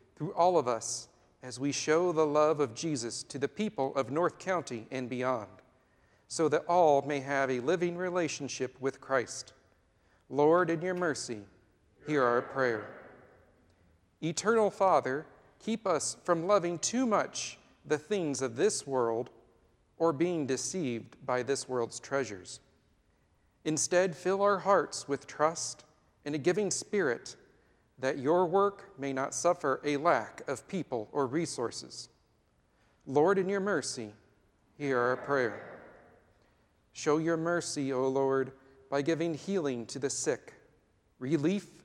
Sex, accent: male, American